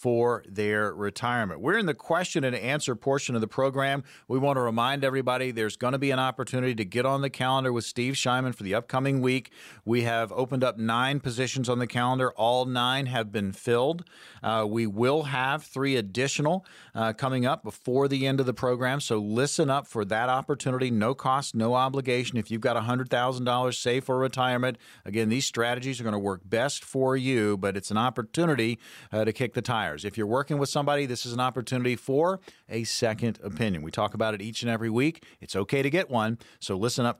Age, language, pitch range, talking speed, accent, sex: 40-59, English, 110-135 Hz, 210 wpm, American, male